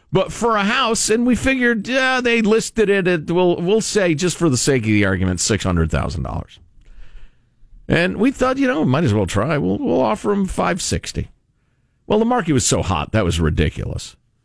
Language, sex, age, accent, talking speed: English, male, 50-69, American, 210 wpm